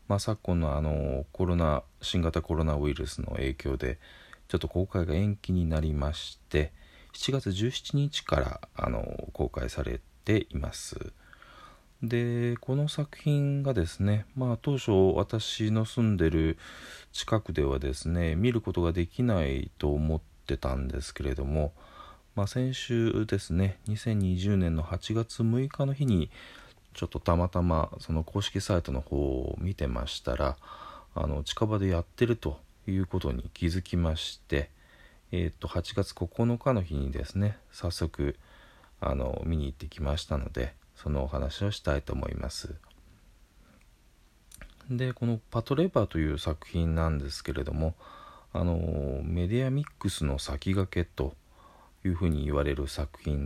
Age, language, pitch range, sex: 40-59, Japanese, 75-105 Hz, male